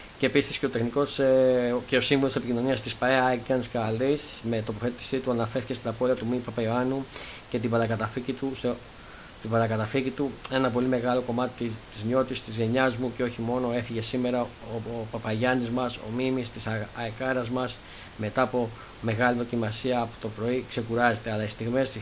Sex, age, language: male, 20-39, Greek